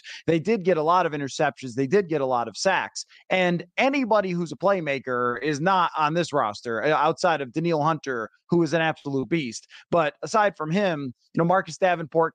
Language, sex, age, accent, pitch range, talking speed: English, male, 30-49, American, 150-190 Hz, 200 wpm